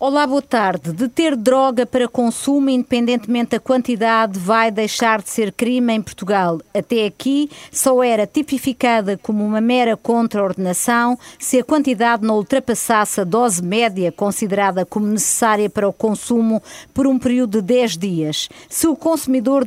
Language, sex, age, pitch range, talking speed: Portuguese, female, 50-69, 205-255 Hz, 155 wpm